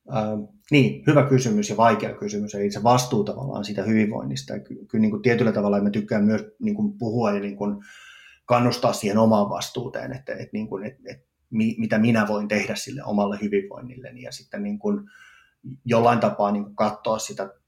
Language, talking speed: Finnish, 180 wpm